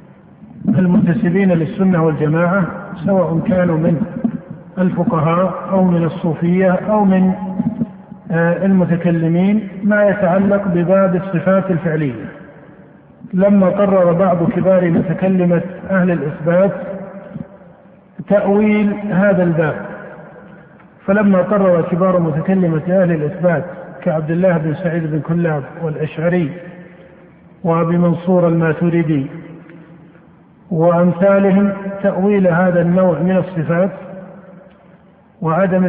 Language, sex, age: Arabic, male, 50-69